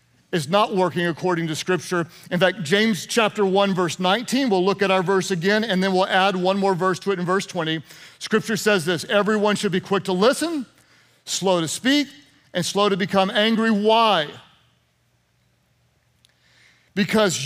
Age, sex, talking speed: 40-59, male, 170 wpm